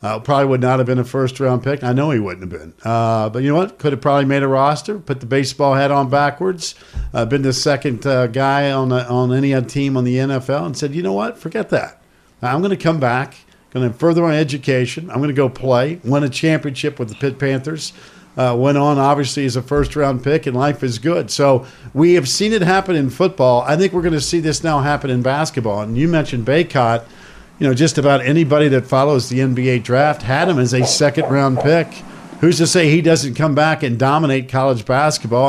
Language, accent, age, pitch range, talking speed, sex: English, American, 50-69, 130-155 Hz, 230 wpm, male